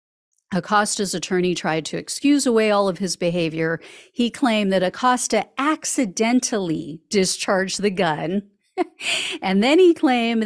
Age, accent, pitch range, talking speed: 40-59, American, 180-250 Hz, 125 wpm